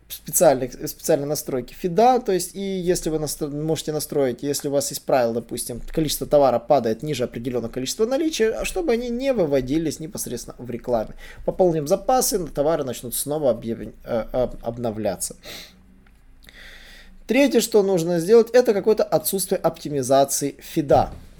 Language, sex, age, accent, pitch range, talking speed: Russian, male, 20-39, native, 130-185 Hz, 130 wpm